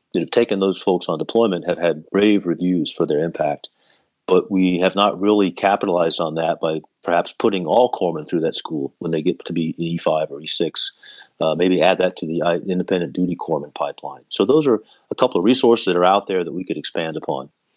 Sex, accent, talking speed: male, American, 215 wpm